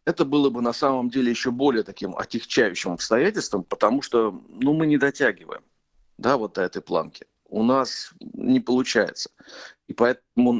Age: 50-69